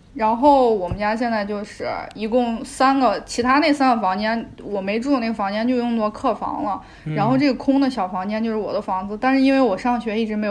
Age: 20-39